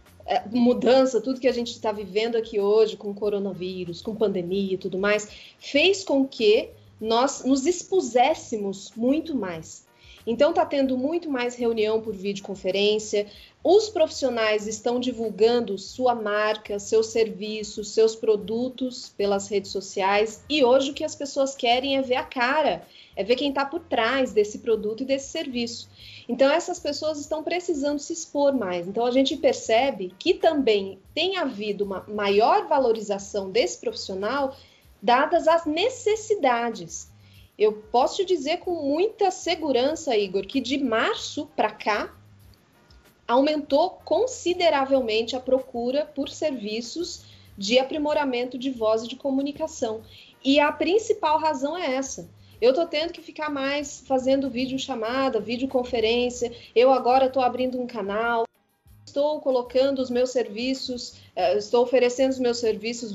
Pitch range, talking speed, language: 215-285 Hz, 140 wpm, Portuguese